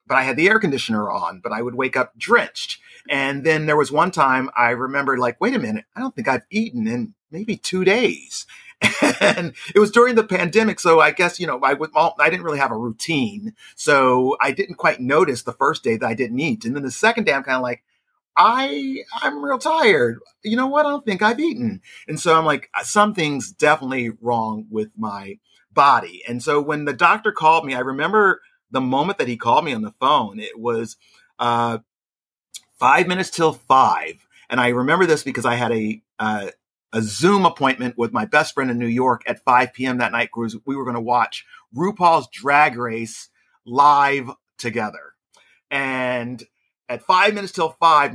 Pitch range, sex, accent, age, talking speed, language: 120-185 Hz, male, American, 40-59, 200 wpm, English